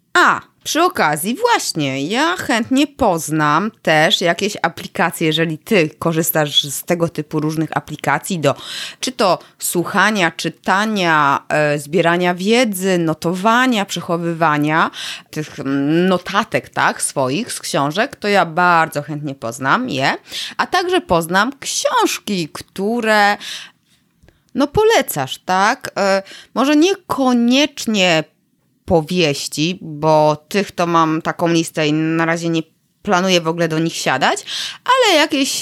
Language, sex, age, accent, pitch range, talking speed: Polish, female, 20-39, native, 145-190 Hz, 120 wpm